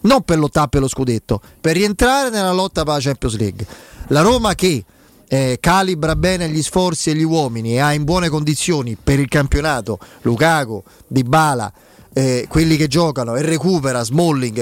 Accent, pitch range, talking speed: native, 125-170 Hz, 175 wpm